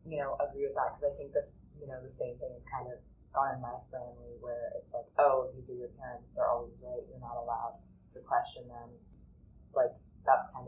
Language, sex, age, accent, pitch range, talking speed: English, female, 20-39, American, 120-180 Hz, 230 wpm